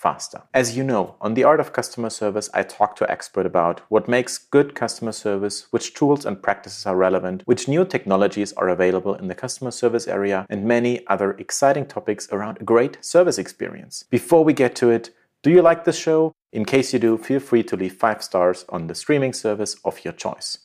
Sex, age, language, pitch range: male, 40-59, English, 100-130 Hz